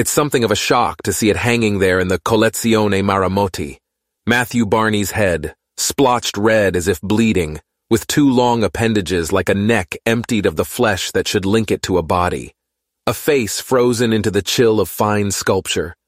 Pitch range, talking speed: 100-115 Hz, 185 wpm